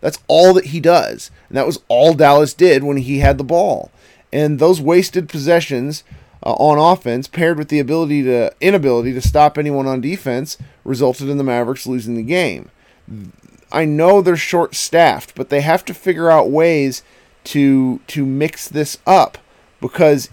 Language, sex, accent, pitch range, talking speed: English, male, American, 135-170 Hz, 170 wpm